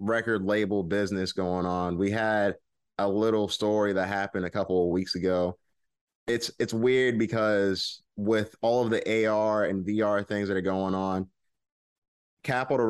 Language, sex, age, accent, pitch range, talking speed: English, male, 20-39, American, 90-100 Hz, 160 wpm